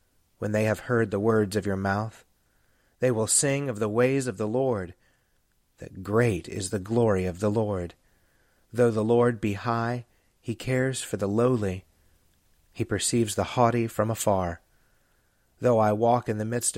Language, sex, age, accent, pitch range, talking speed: English, male, 30-49, American, 100-120 Hz, 170 wpm